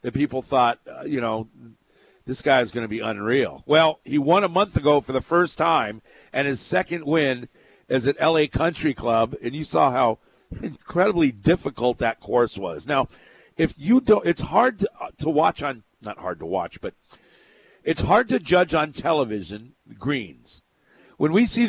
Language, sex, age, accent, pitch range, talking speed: English, male, 50-69, American, 130-175 Hz, 180 wpm